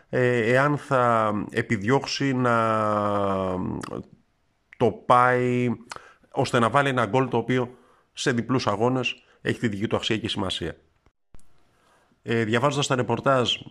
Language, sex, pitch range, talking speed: Greek, male, 100-125 Hz, 115 wpm